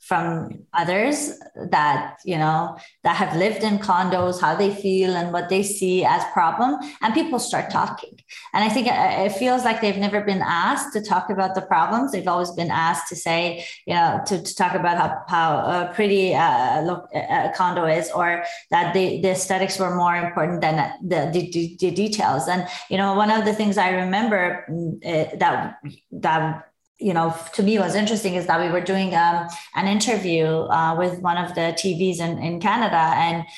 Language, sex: English, female